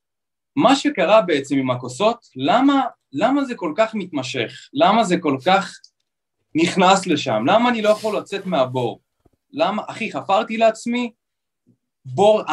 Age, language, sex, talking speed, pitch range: 20-39, Hebrew, male, 135 wpm, 135-225 Hz